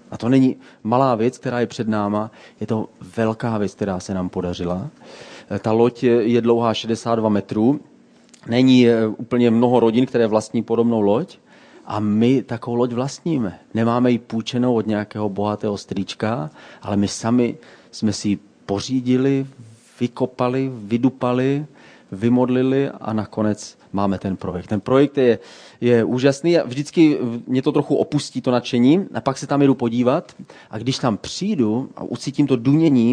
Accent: native